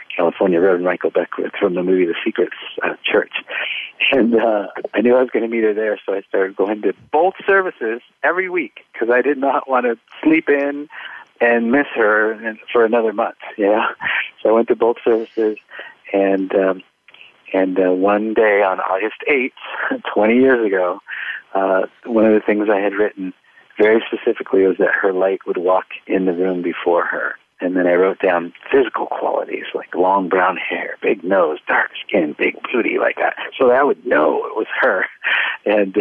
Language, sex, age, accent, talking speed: English, male, 50-69, American, 185 wpm